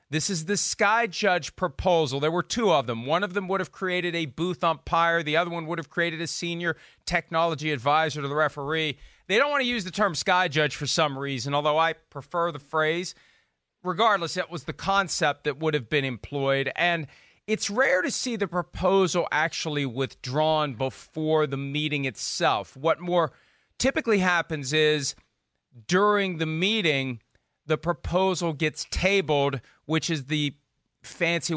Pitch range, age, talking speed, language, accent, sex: 140-175 Hz, 40-59, 170 wpm, English, American, male